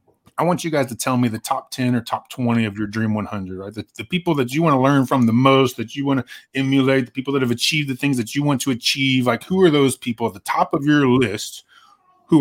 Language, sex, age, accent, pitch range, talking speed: English, male, 30-49, American, 115-140 Hz, 280 wpm